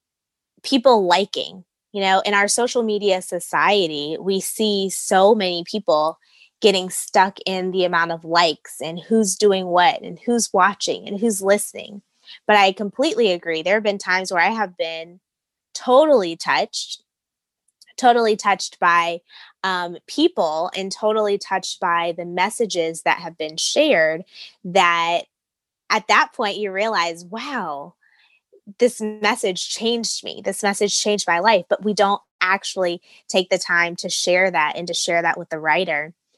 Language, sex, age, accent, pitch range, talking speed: English, female, 20-39, American, 175-210 Hz, 155 wpm